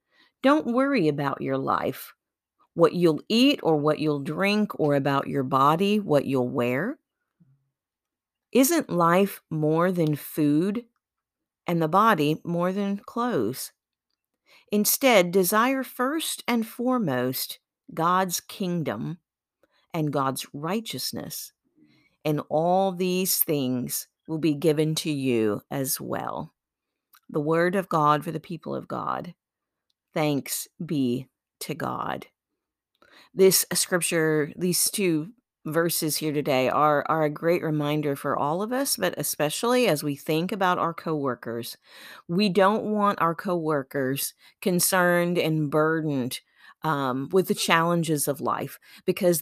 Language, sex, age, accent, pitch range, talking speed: English, female, 50-69, American, 145-190 Hz, 125 wpm